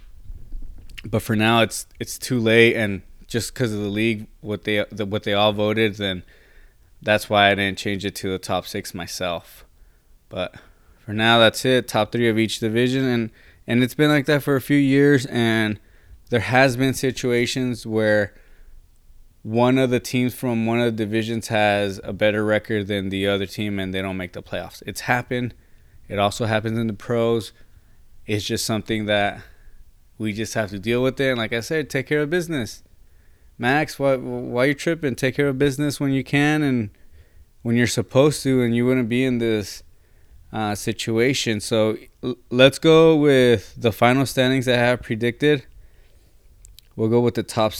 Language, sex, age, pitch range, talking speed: English, male, 20-39, 100-125 Hz, 190 wpm